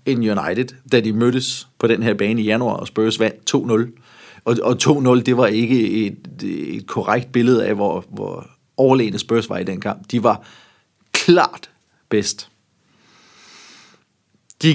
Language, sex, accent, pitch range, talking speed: Danish, male, native, 110-135 Hz, 155 wpm